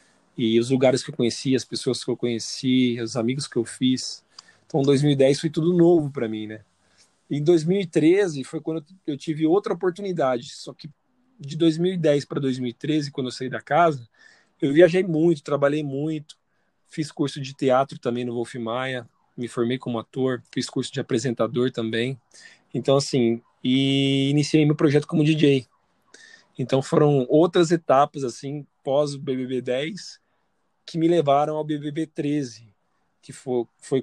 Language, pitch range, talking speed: Portuguese, 125-155 Hz, 155 wpm